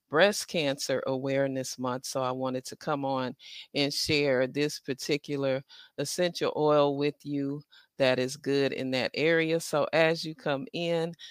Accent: American